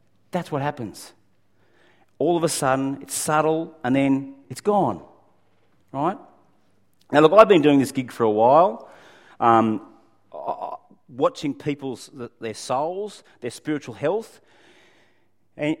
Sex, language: male, English